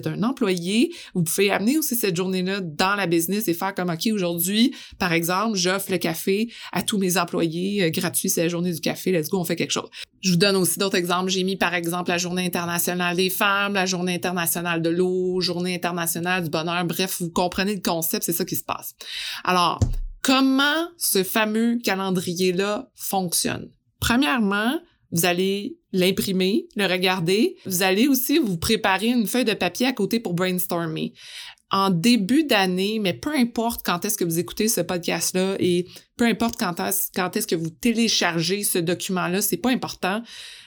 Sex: female